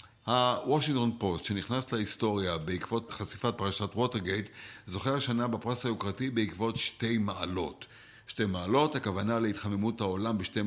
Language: Hebrew